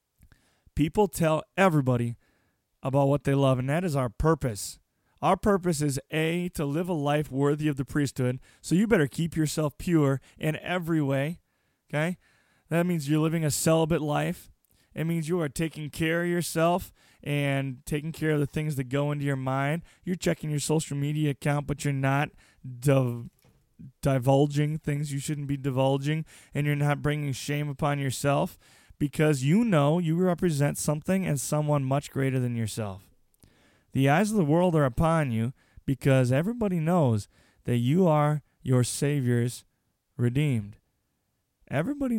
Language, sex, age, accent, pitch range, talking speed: English, male, 20-39, American, 135-165 Hz, 160 wpm